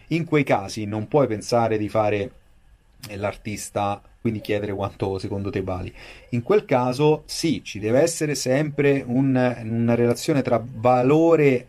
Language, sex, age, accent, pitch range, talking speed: Italian, male, 30-49, native, 105-140 Hz, 140 wpm